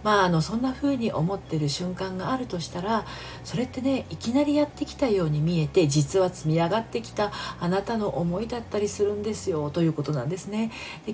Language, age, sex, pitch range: Japanese, 40-59, female, 150-225 Hz